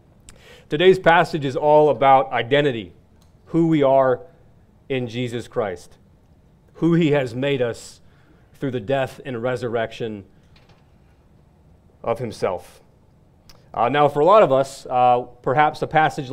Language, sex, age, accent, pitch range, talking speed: English, male, 30-49, American, 125-155 Hz, 130 wpm